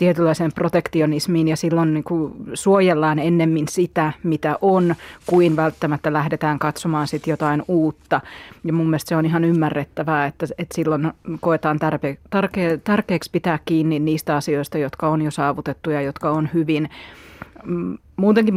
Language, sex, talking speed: Finnish, female, 130 wpm